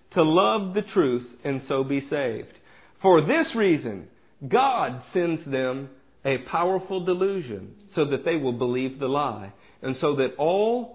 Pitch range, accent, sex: 145-240 Hz, American, male